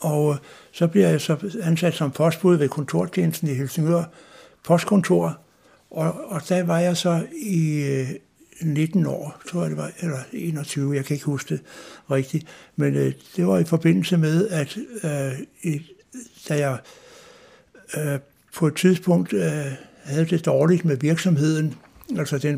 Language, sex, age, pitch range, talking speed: Danish, male, 60-79, 145-175 Hz, 155 wpm